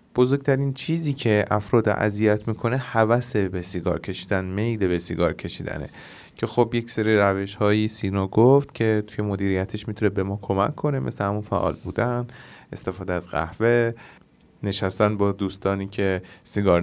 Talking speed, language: 145 wpm, Persian